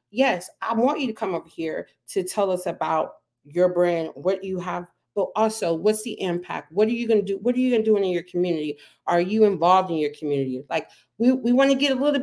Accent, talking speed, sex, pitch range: American, 245 wpm, female, 180-230 Hz